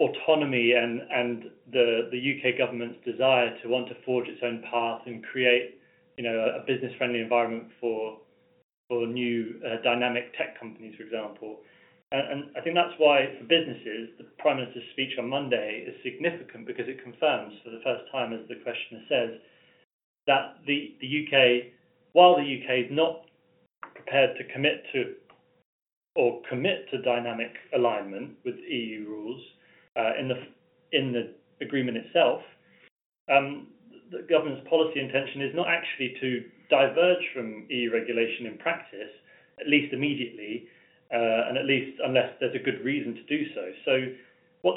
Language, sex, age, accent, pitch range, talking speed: English, male, 30-49, British, 120-150 Hz, 160 wpm